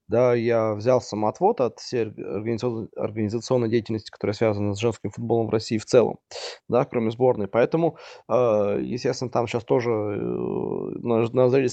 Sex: male